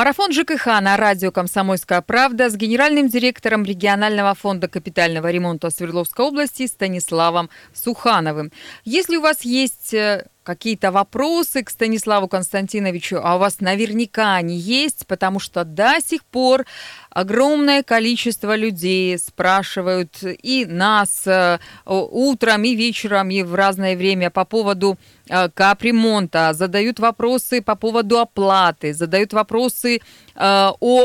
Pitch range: 190-245 Hz